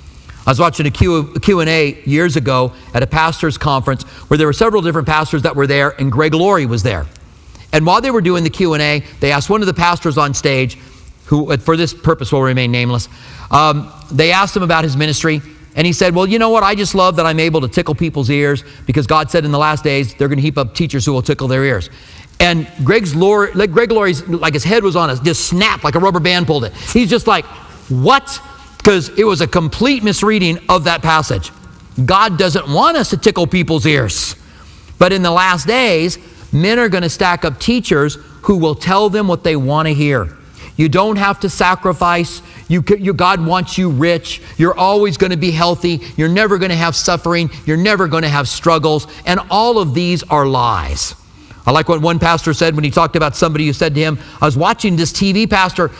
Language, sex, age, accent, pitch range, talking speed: English, male, 40-59, American, 140-185 Hz, 225 wpm